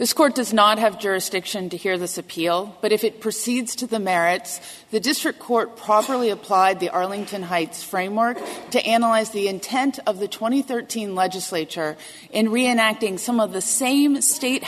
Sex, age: female, 30-49